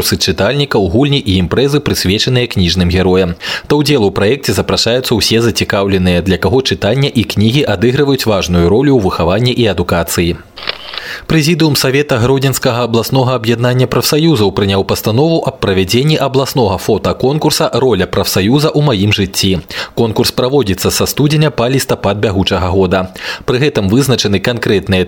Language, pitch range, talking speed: Russian, 95-130 Hz, 135 wpm